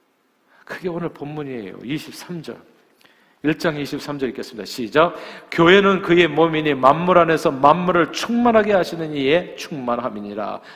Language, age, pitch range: Korean, 40-59, 115-160 Hz